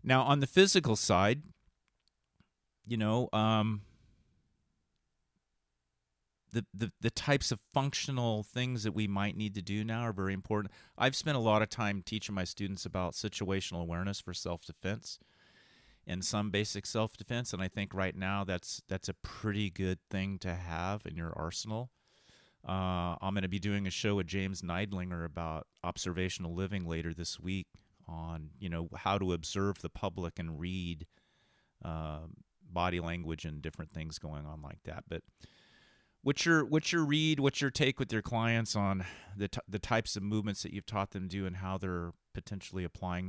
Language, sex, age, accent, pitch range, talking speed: English, male, 30-49, American, 85-105 Hz, 175 wpm